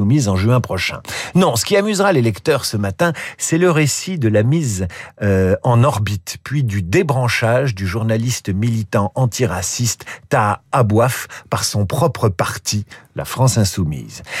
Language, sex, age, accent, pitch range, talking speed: French, male, 50-69, French, 115-180 Hz, 155 wpm